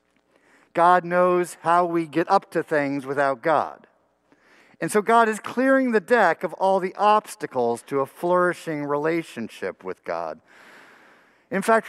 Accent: American